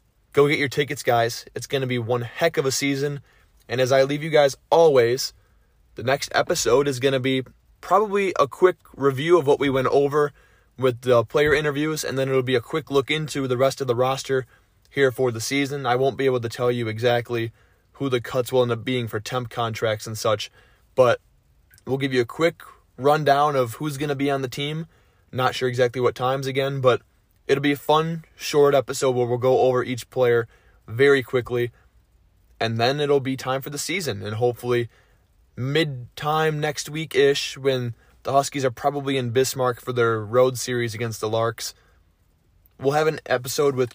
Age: 20-39